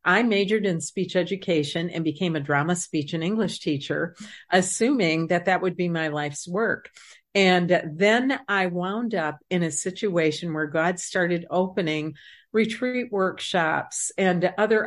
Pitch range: 165-205 Hz